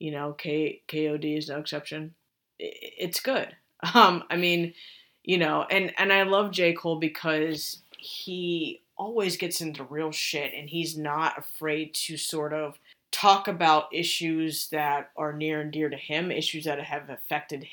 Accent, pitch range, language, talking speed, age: American, 150-170 Hz, English, 165 wpm, 20-39